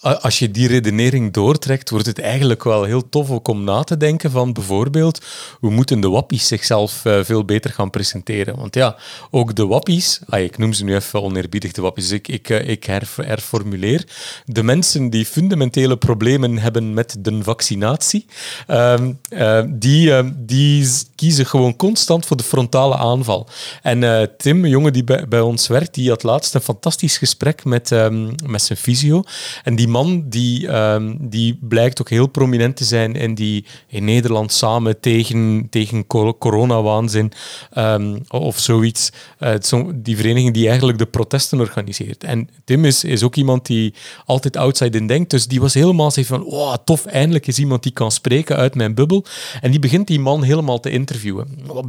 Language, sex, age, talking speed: Dutch, male, 40-59, 175 wpm